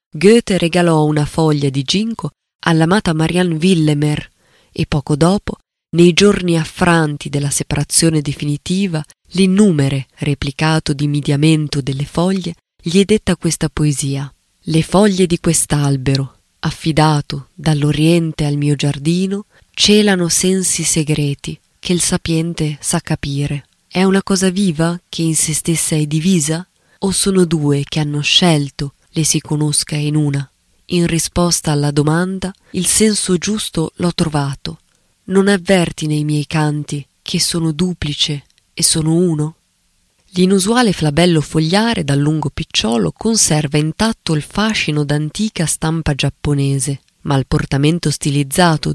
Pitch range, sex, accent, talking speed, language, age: 145-180 Hz, female, native, 125 wpm, Italian, 20-39